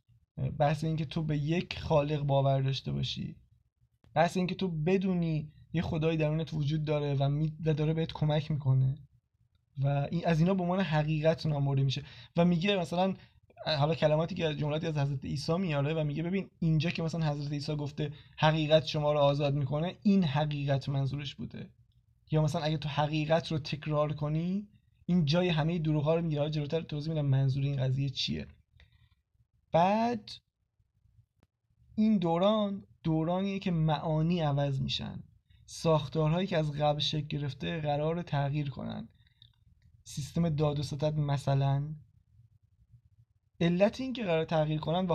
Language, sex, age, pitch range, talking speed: Persian, male, 20-39, 140-170 Hz, 145 wpm